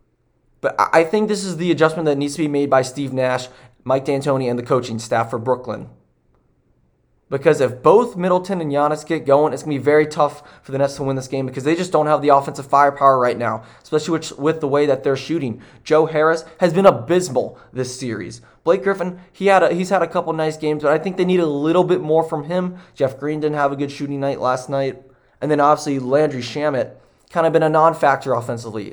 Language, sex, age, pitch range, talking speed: English, male, 20-39, 135-165 Hz, 230 wpm